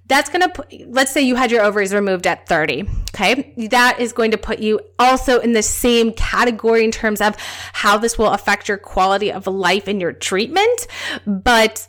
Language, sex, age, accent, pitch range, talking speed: English, female, 20-39, American, 200-260 Hz, 200 wpm